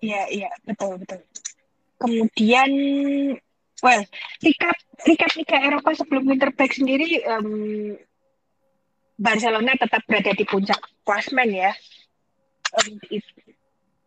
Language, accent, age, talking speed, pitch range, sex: Indonesian, native, 20-39, 100 wpm, 210-270 Hz, female